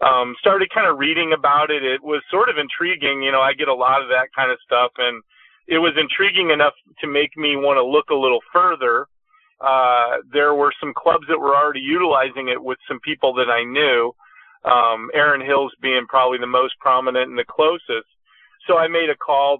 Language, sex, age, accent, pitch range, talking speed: English, male, 40-59, American, 130-155 Hz, 210 wpm